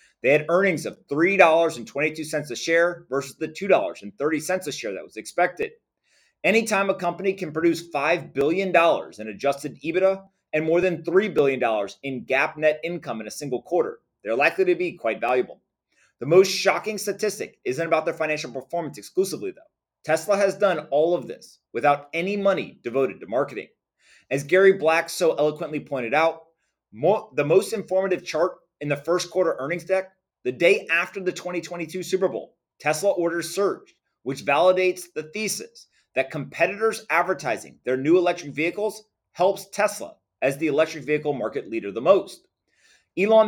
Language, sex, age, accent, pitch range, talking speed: English, male, 30-49, American, 155-195 Hz, 160 wpm